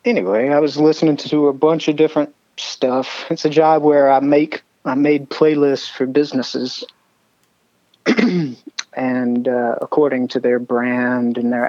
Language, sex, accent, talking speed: English, male, American, 150 wpm